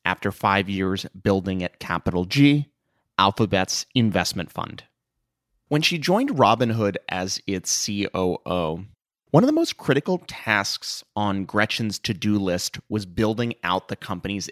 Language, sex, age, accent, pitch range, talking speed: English, male, 30-49, American, 95-135 Hz, 130 wpm